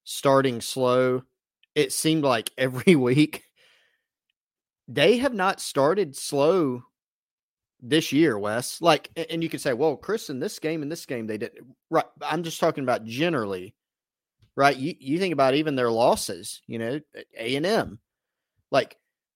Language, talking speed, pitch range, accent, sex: English, 150 wpm, 115-150 Hz, American, male